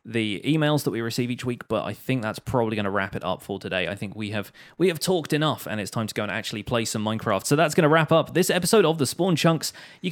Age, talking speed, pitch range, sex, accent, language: 30-49, 295 wpm, 110-155 Hz, male, British, English